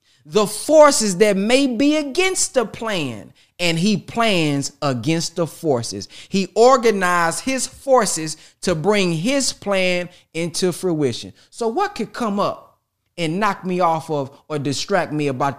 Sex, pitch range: male, 150-220 Hz